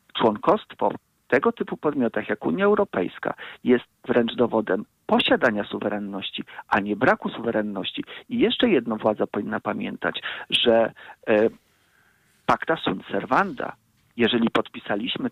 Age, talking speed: 50-69, 115 wpm